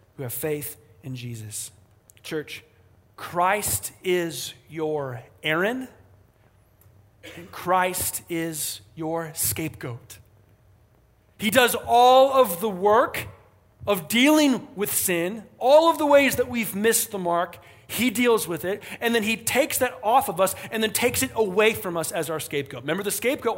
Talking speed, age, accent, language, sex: 150 wpm, 40-59, American, English, male